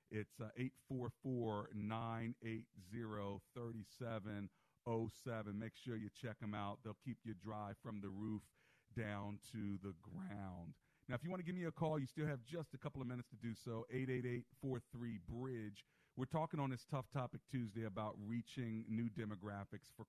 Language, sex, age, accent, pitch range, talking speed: English, male, 50-69, American, 110-135 Hz, 160 wpm